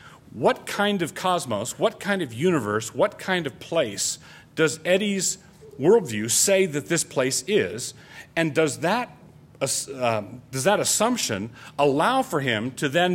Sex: male